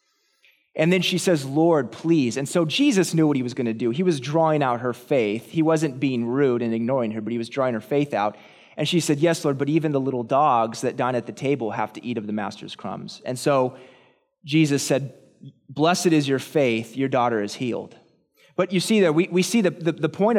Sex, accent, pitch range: male, American, 135-180 Hz